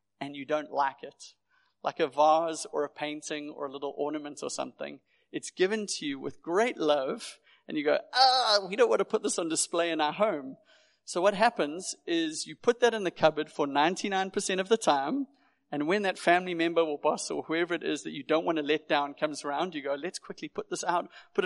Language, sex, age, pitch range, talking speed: English, male, 40-59, 145-200 Hz, 230 wpm